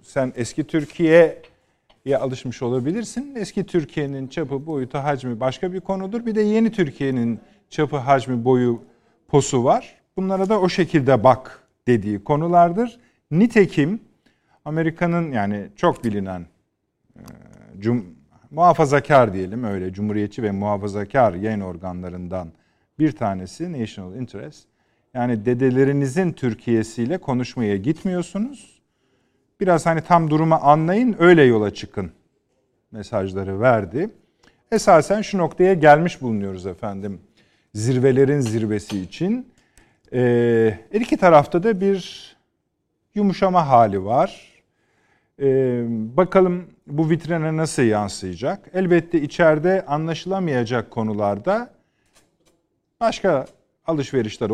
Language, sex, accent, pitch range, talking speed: Turkish, male, native, 115-175 Hz, 100 wpm